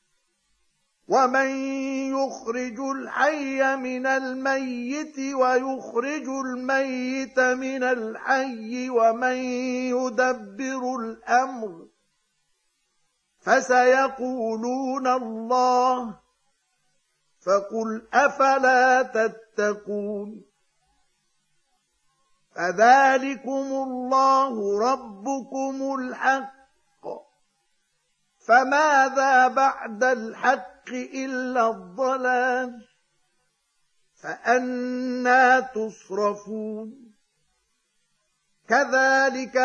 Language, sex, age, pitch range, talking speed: Arabic, male, 50-69, 225-270 Hz, 45 wpm